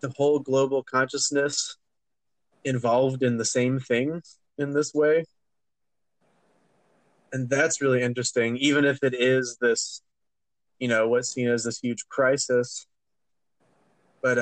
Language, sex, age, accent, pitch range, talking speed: English, male, 20-39, American, 120-140 Hz, 125 wpm